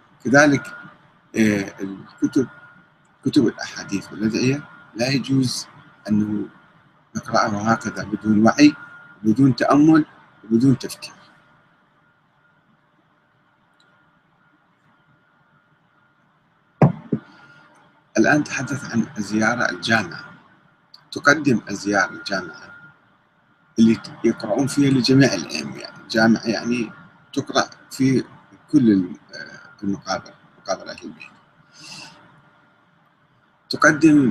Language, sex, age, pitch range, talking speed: Arabic, male, 50-69, 110-140 Hz, 65 wpm